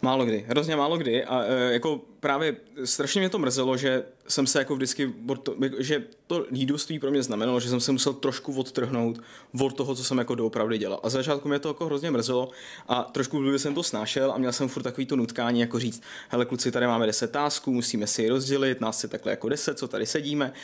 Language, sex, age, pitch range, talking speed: Czech, male, 20-39, 115-135 Hz, 225 wpm